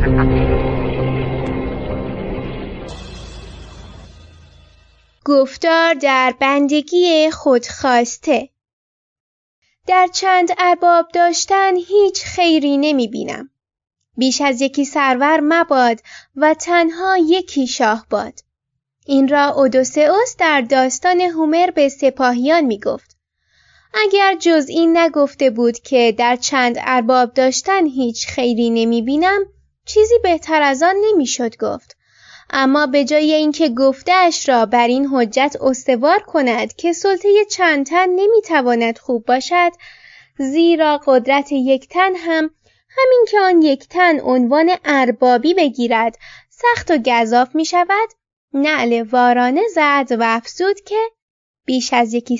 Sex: female